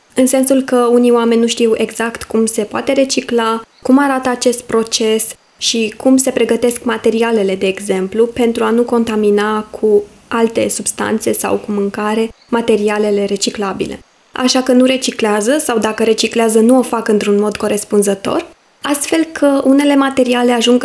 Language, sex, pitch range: Romanian, female, 220-265 Hz